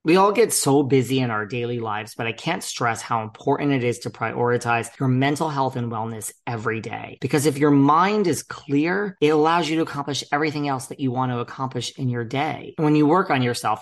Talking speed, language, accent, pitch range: 225 wpm, English, American, 115-140 Hz